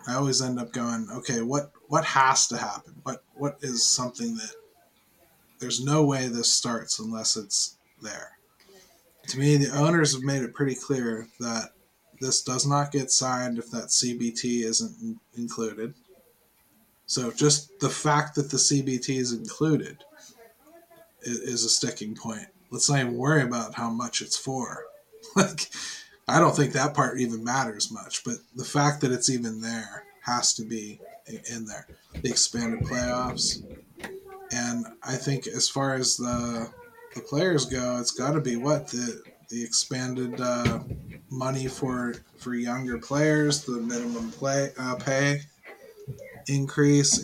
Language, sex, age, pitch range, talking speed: English, male, 20-39, 120-145 Hz, 150 wpm